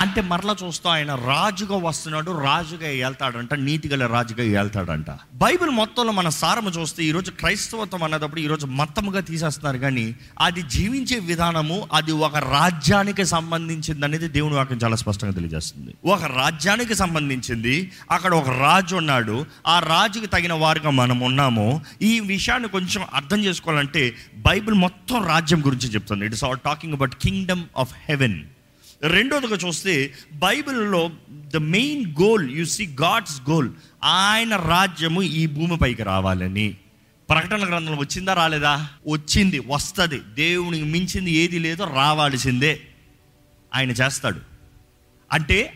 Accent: native